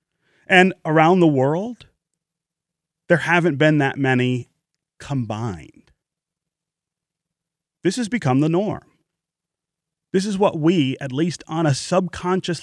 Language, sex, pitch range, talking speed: English, male, 135-170 Hz, 115 wpm